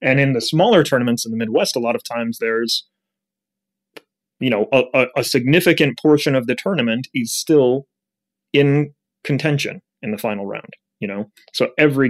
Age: 30-49